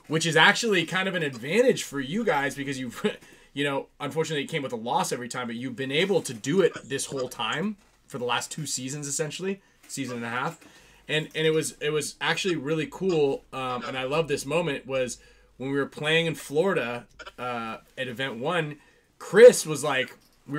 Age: 20-39